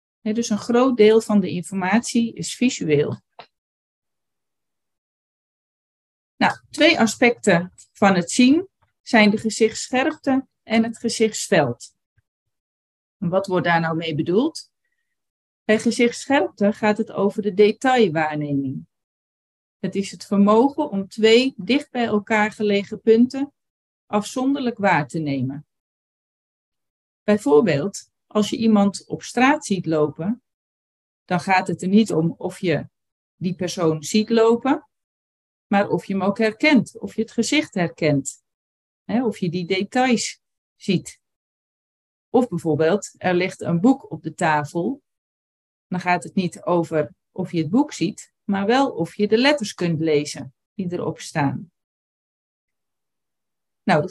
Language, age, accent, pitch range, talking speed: Dutch, 40-59, Dutch, 165-230 Hz, 130 wpm